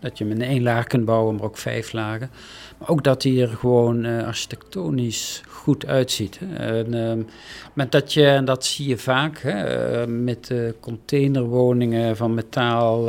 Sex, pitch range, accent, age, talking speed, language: male, 115-140 Hz, Dutch, 50-69, 180 wpm, Dutch